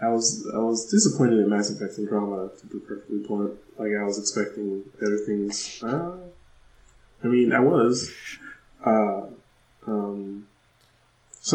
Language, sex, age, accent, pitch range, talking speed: English, male, 20-39, American, 100-115 Hz, 145 wpm